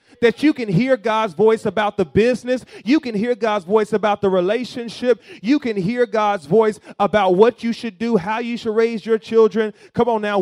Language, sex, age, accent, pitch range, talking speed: English, male, 30-49, American, 155-220 Hz, 205 wpm